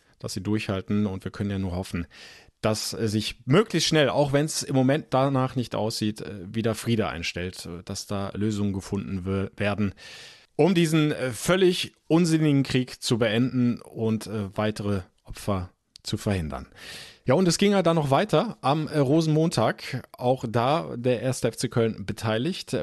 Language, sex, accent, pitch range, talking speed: German, male, German, 105-135 Hz, 155 wpm